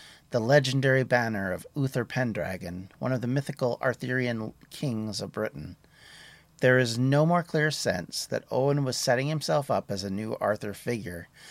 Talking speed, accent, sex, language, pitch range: 160 wpm, American, male, English, 110-150 Hz